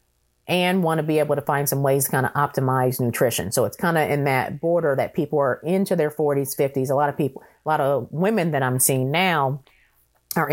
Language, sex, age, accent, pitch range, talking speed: English, female, 30-49, American, 140-190 Hz, 230 wpm